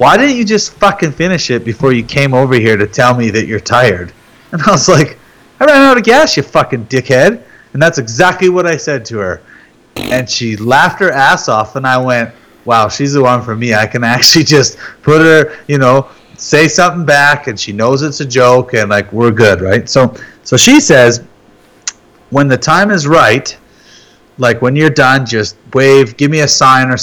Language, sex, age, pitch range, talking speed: English, male, 30-49, 110-145 Hz, 210 wpm